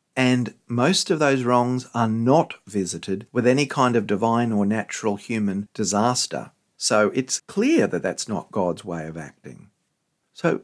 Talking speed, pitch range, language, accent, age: 160 wpm, 100-130 Hz, English, Australian, 50-69